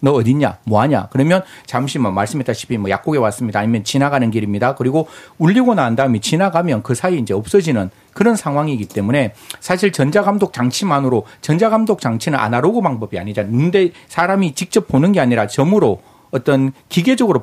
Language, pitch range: Korean, 115-190 Hz